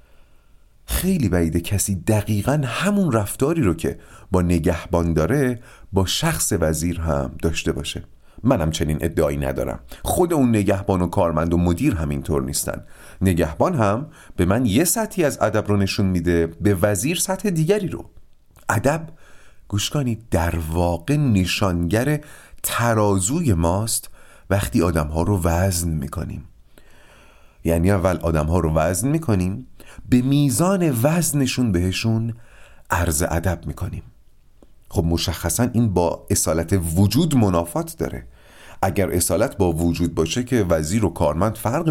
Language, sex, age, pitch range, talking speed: Persian, male, 40-59, 85-120 Hz, 130 wpm